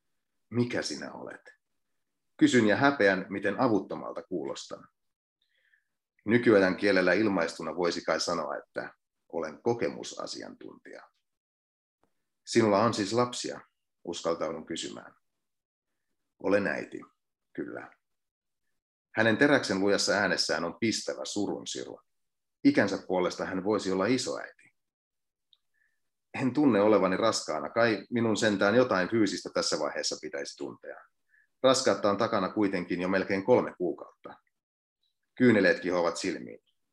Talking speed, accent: 105 wpm, native